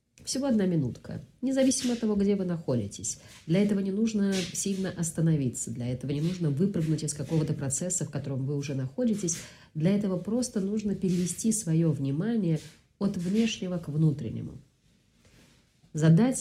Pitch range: 135-190 Hz